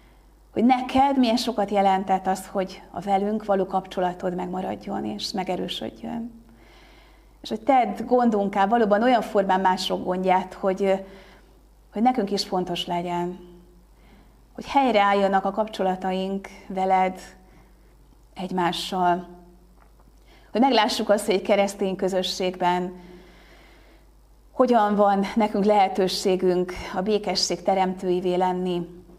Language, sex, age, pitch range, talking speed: Hungarian, female, 30-49, 180-195 Hz, 100 wpm